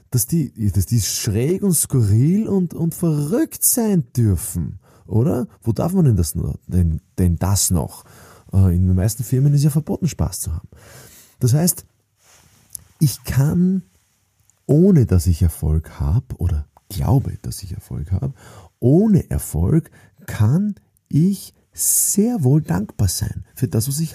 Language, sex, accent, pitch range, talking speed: German, male, German, 100-160 Hz, 150 wpm